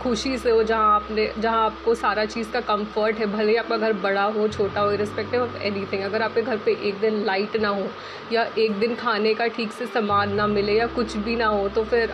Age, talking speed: 20-39, 235 wpm